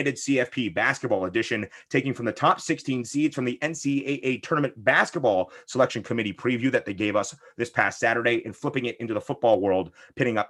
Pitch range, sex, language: 115-140 Hz, male, English